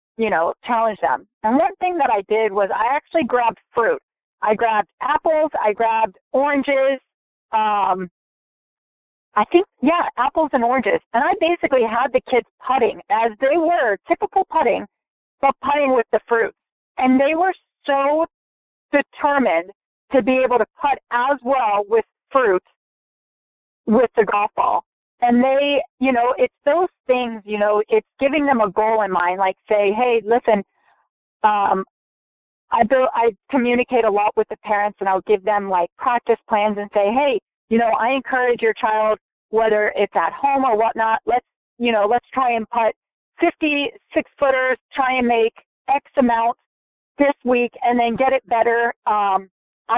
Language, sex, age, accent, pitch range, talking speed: English, female, 40-59, American, 215-280 Hz, 165 wpm